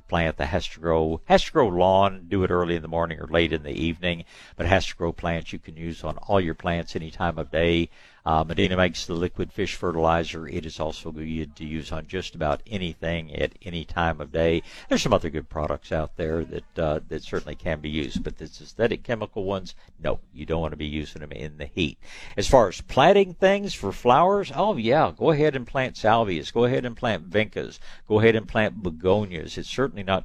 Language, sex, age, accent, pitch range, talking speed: English, male, 60-79, American, 80-105 Hz, 230 wpm